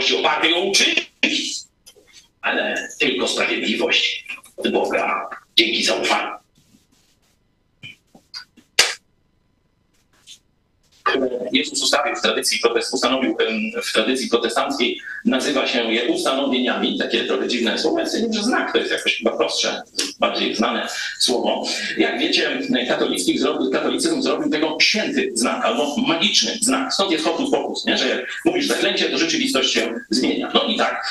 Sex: male